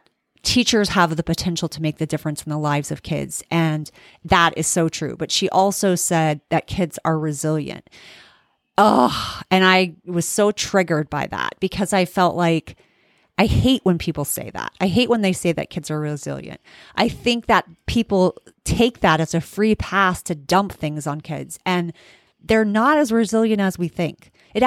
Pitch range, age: 160-190 Hz, 30-49